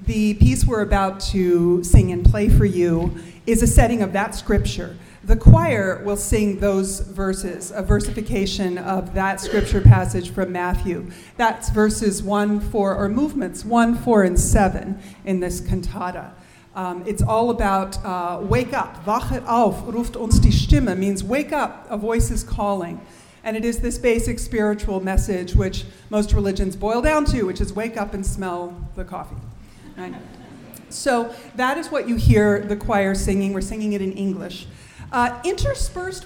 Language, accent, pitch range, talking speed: English, American, 190-230 Hz, 165 wpm